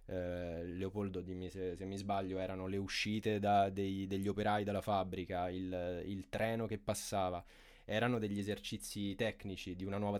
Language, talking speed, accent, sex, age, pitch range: Italian, 165 wpm, native, male, 20-39, 95-115 Hz